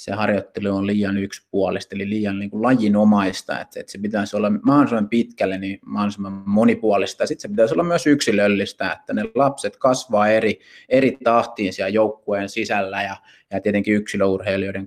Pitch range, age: 100-115 Hz, 30-49